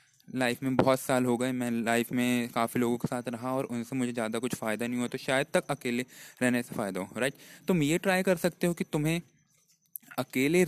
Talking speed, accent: 225 wpm, native